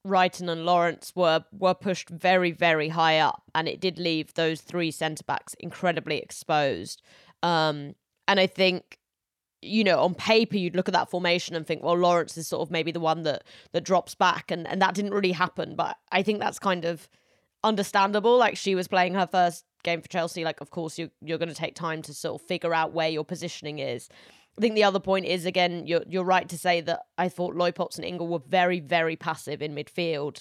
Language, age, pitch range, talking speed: English, 20-39, 165-190 Hz, 215 wpm